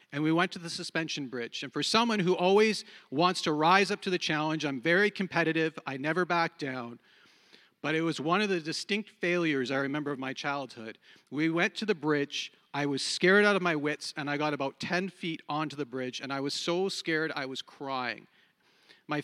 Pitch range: 155-205 Hz